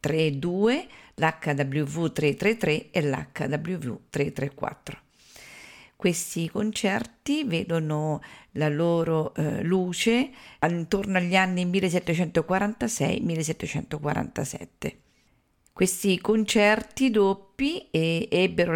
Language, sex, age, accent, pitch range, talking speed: Italian, female, 50-69, native, 155-200 Hz, 65 wpm